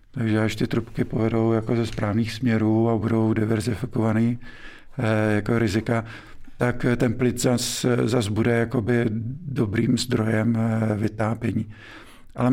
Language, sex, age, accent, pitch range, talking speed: Czech, male, 50-69, native, 110-125 Hz, 125 wpm